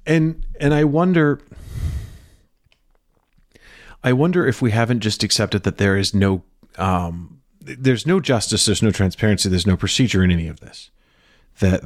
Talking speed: 150 wpm